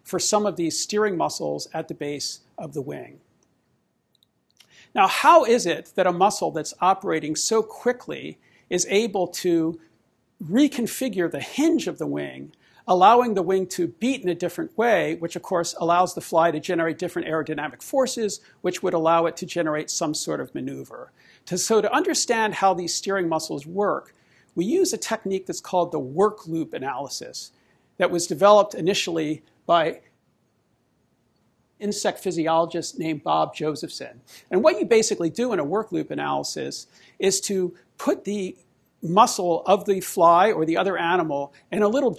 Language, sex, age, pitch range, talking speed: English, male, 50-69, 165-210 Hz, 165 wpm